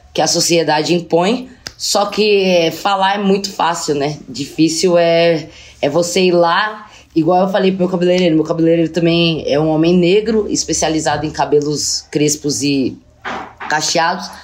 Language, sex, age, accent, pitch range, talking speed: Portuguese, female, 20-39, Brazilian, 165-215 Hz, 150 wpm